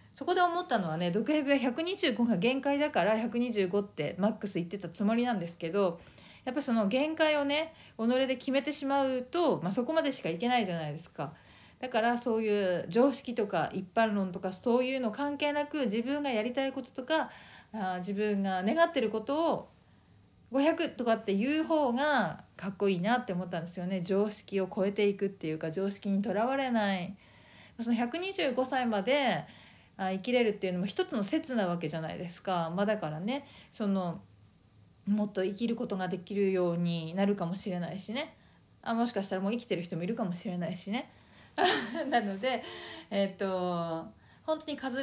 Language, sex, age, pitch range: Japanese, female, 40-59, 185-255 Hz